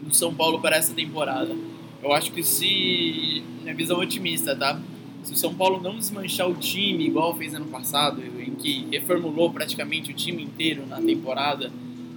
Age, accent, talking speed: 20-39, Brazilian, 175 wpm